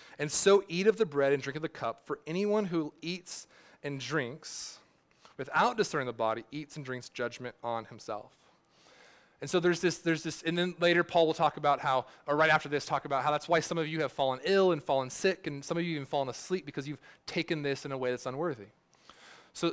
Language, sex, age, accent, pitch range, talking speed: English, male, 30-49, American, 140-180 Hz, 230 wpm